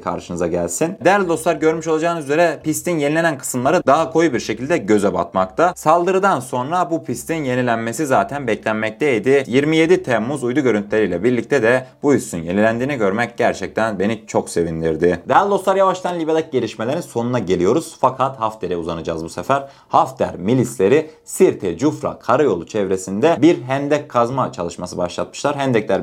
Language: Turkish